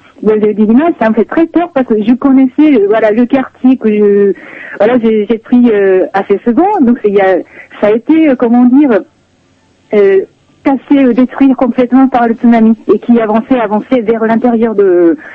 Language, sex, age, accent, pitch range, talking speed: French, female, 40-59, French, 200-255 Hz, 170 wpm